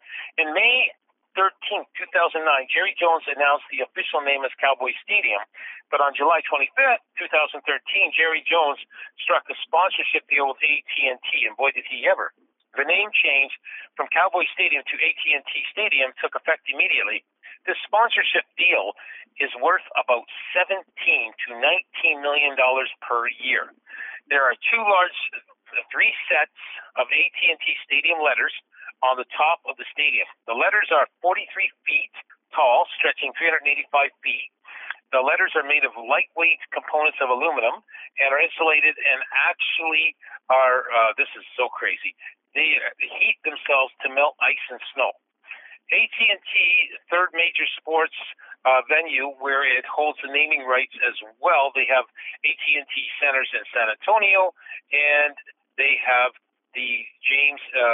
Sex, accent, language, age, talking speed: male, American, English, 50-69, 140 wpm